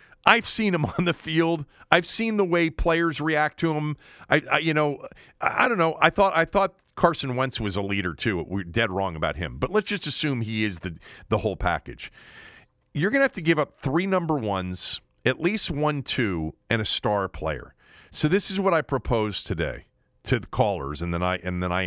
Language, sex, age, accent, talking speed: English, male, 40-59, American, 220 wpm